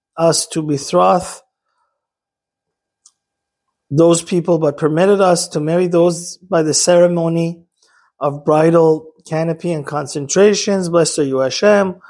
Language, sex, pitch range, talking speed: English, male, 155-185 Hz, 115 wpm